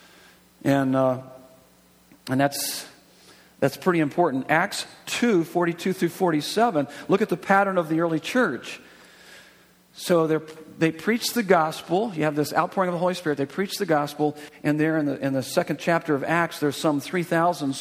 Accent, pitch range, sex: American, 145-185 Hz, male